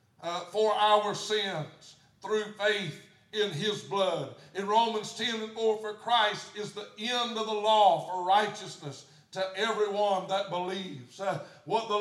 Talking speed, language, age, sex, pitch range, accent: 155 wpm, English, 60-79, male, 195-230 Hz, American